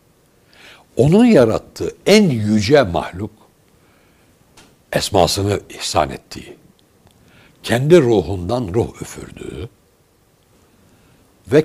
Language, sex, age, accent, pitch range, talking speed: Turkish, male, 60-79, native, 115-150 Hz, 65 wpm